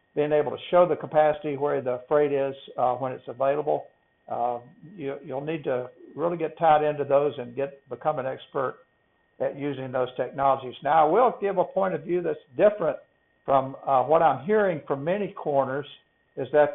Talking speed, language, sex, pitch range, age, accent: 190 wpm, English, male, 135-170 Hz, 60-79, American